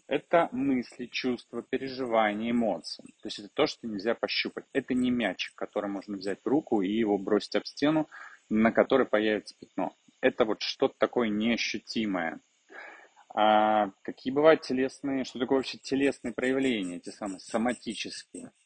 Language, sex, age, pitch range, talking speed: Russian, male, 30-49, 105-130 Hz, 145 wpm